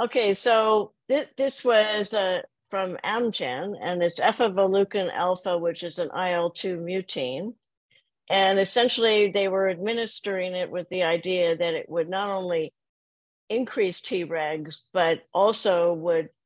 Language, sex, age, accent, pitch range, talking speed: English, female, 50-69, American, 165-200 Hz, 130 wpm